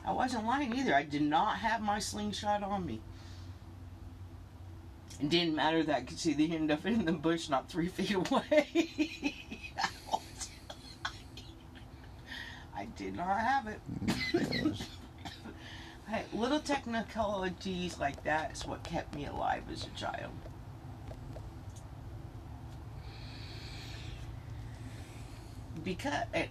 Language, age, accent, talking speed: English, 40-59, American, 110 wpm